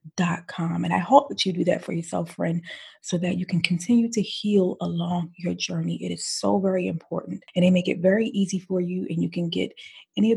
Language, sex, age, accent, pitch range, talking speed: English, female, 30-49, American, 175-215 Hz, 235 wpm